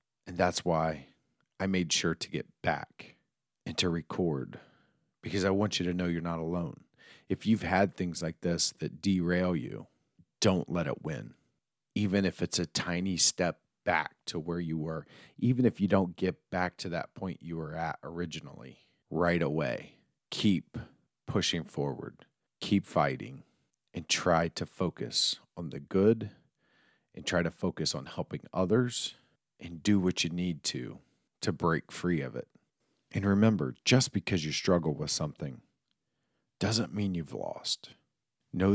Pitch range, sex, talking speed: 80-95 Hz, male, 160 wpm